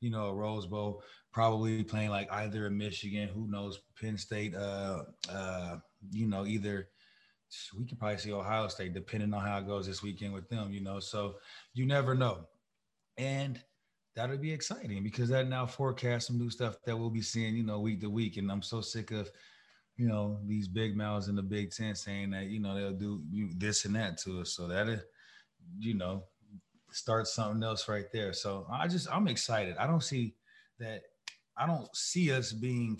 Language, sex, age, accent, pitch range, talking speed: English, male, 20-39, American, 105-120 Hz, 195 wpm